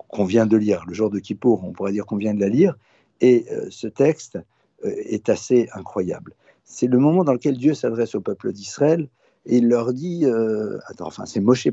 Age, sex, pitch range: 50-69, male, 120-155 Hz